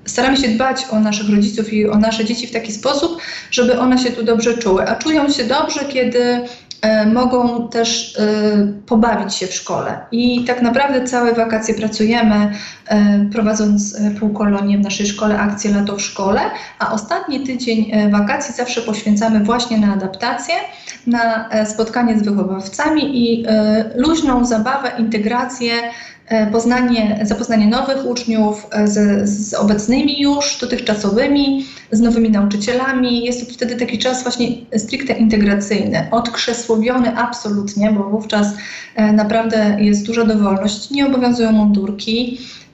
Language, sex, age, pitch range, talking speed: Polish, female, 30-49, 210-245 Hz, 140 wpm